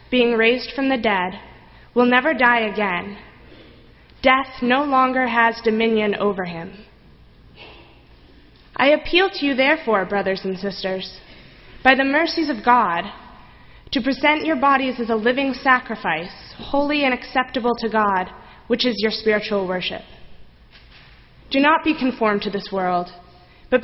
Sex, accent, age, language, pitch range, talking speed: female, American, 20-39, English, 210-275 Hz, 140 wpm